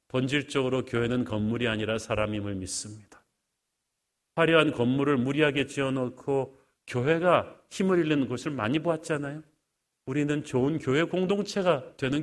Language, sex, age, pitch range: Korean, male, 40-59, 125-170 Hz